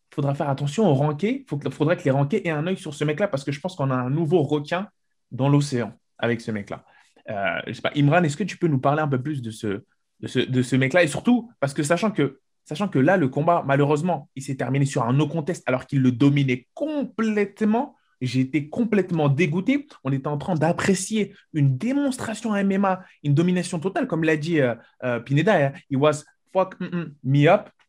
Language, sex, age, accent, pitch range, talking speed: French, male, 20-39, French, 135-180 Hz, 220 wpm